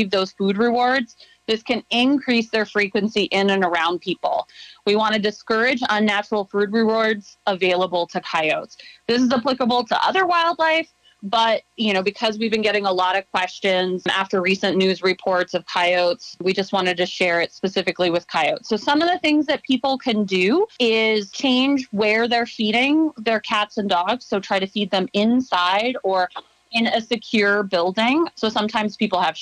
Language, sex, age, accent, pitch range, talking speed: English, female, 30-49, American, 190-235 Hz, 175 wpm